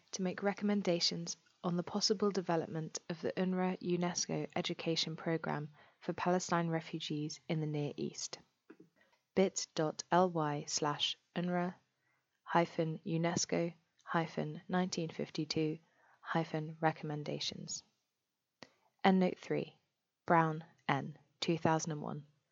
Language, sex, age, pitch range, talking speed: English, female, 20-39, 160-185 Hz, 80 wpm